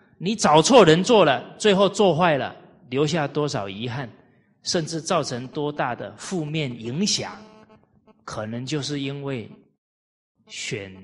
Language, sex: Chinese, male